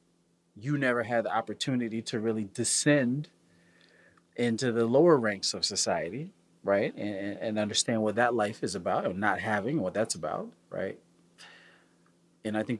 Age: 30-49